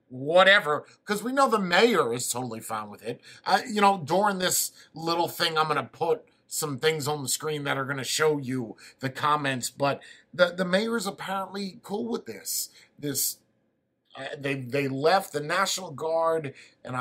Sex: male